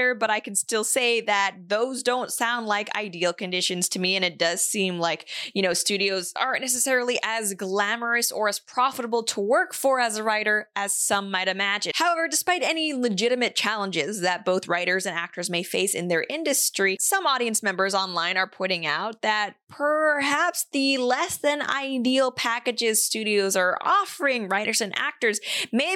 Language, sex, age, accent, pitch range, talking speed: English, female, 20-39, American, 205-285 Hz, 175 wpm